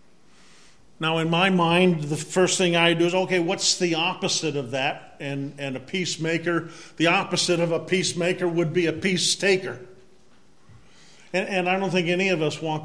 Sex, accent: male, American